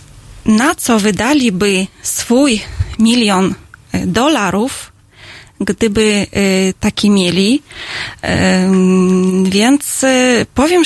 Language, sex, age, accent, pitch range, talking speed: Polish, female, 20-39, native, 195-265 Hz, 60 wpm